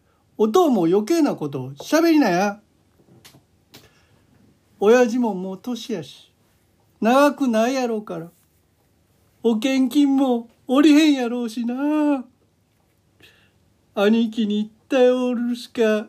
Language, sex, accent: Japanese, male, native